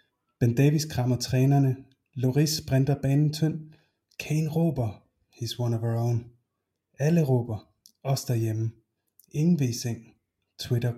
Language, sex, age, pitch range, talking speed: Danish, male, 30-49, 115-130 Hz, 110 wpm